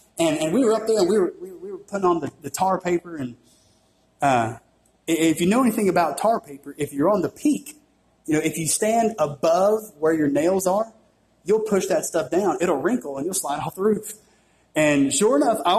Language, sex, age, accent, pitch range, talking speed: English, male, 30-49, American, 150-230 Hz, 230 wpm